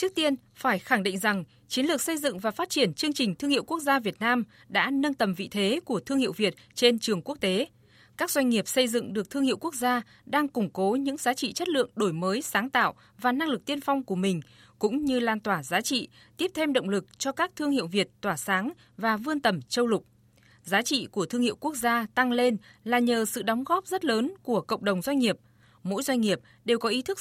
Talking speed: 250 wpm